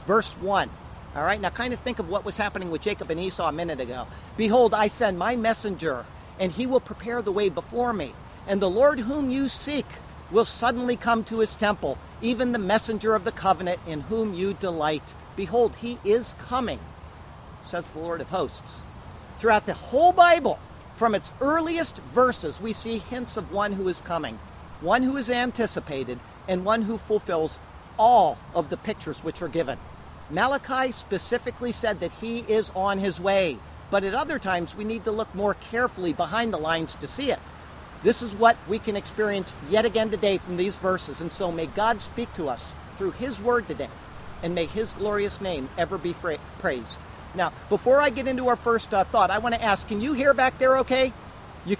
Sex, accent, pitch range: male, American, 180-235 Hz